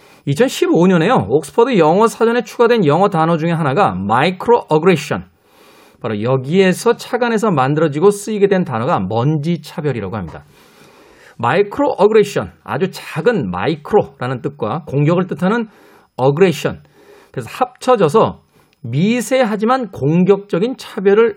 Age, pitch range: 40-59, 150-225 Hz